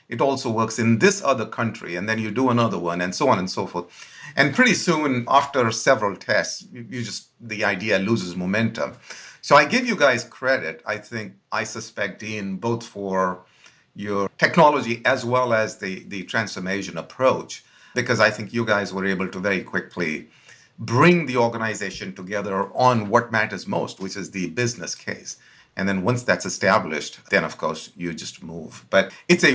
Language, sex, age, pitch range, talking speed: English, male, 50-69, 100-130 Hz, 185 wpm